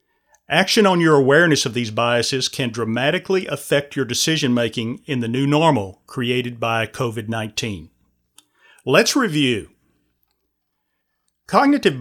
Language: English